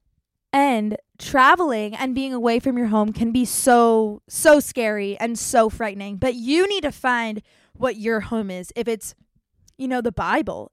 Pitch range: 210-260 Hz